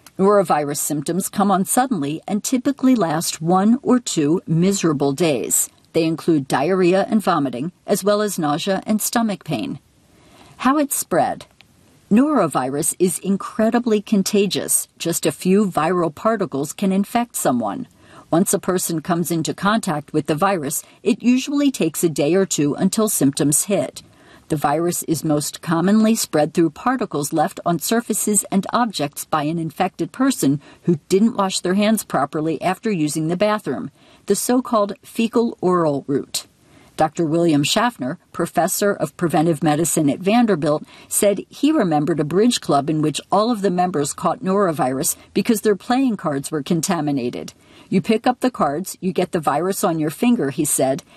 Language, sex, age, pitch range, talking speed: English, female, 50-69, 155-210 Hz, 155 wpm